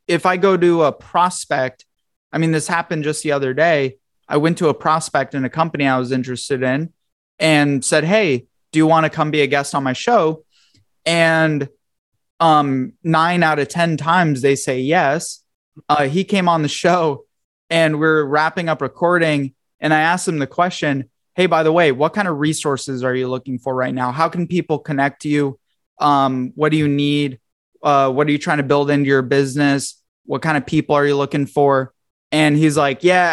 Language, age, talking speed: English, 20-39, 205 wpm